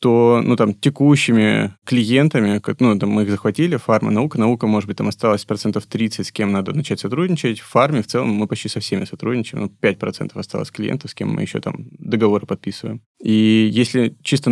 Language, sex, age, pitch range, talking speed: Russian, male, 20-39, 105-120 Hz, 205 wpm